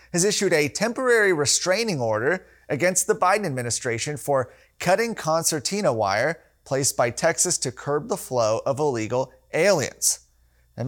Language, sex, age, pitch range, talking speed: English, male, 30-49, 125-155 Hz, 140 wpm